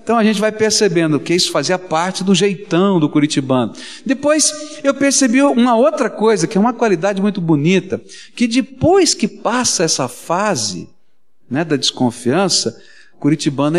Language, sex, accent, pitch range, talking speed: Portuguese, male, Brazilian, 160-250 Hz, 150 wpm